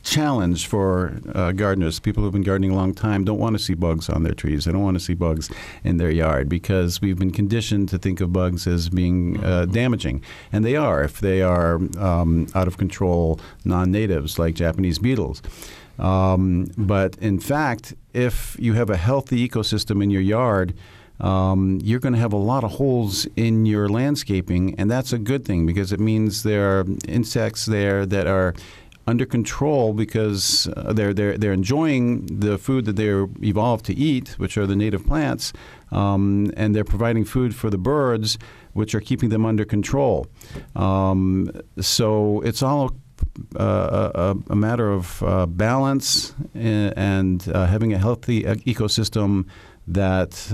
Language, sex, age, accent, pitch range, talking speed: English, male, 50-69, American, 90-115 Hz, 175 wpm